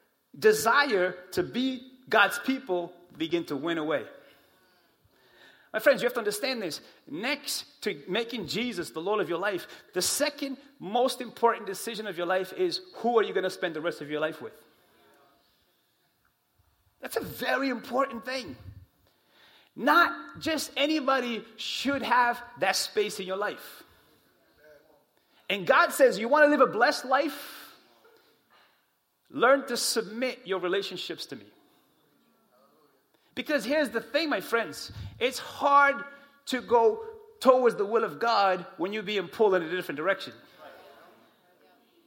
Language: English